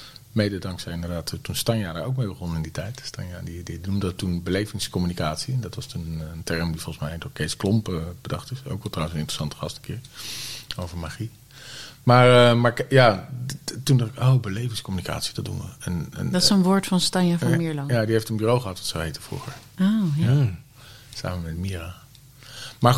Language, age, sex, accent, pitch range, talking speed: Dutch, 40-59, male, Dutch, 95-130 Hz, 205 wpm